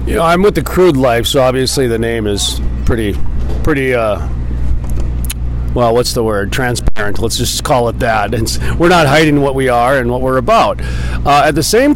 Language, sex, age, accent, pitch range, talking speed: English, male, 40-59, American, 105-140 Hz, 200 wpm